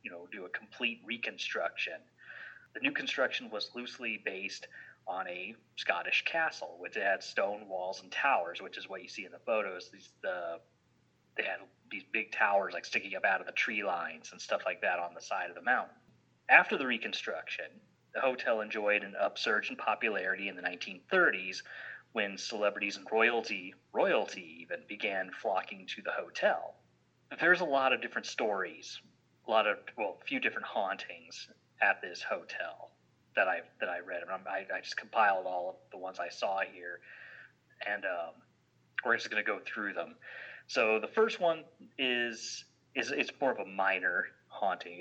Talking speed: 180 wpm